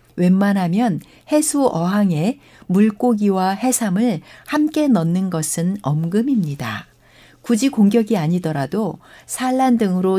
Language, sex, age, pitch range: Korean, female, 60-79, 175-245 Hz